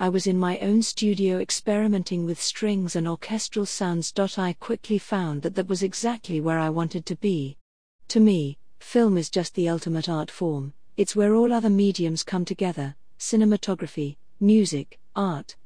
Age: 50-69